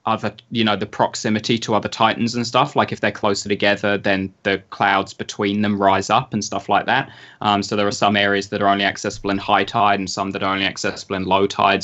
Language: English